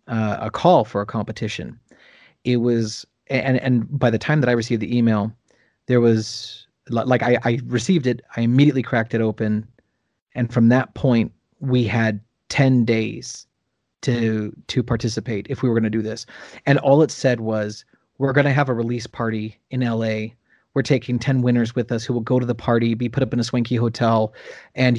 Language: English